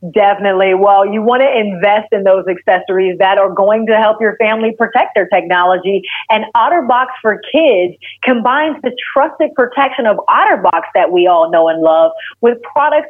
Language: English